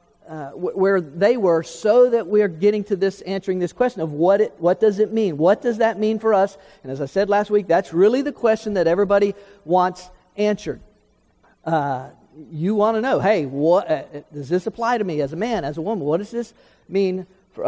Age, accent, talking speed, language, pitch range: 50-69, American, 220 wpm, English, 160-215 Hz